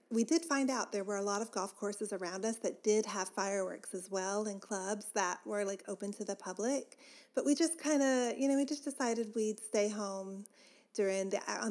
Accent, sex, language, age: American, female, English, 30-49